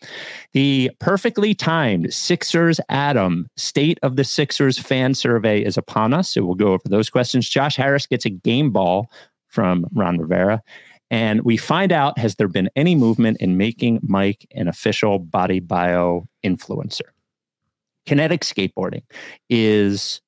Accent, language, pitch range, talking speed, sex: American, English, 100-140 Hz, 145 wpm, male